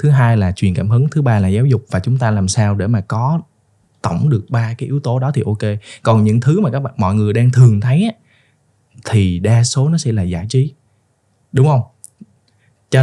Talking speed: 235 wpm